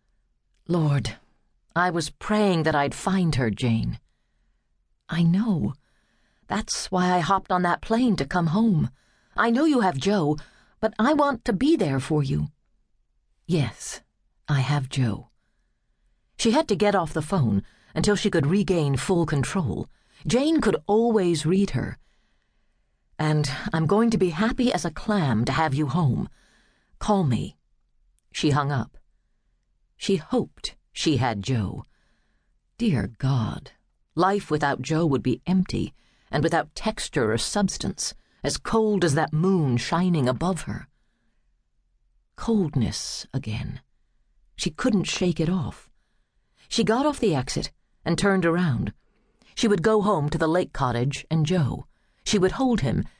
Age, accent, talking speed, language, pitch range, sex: 50-69, American, 145 wpm, English, 135-195 Hz, female